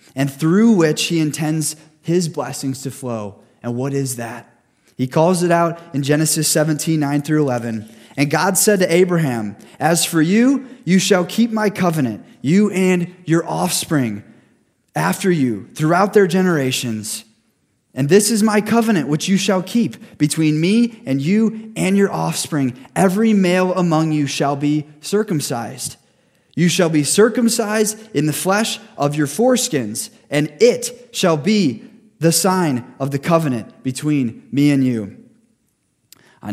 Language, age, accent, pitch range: English, 20-39, American, 125-185 Hz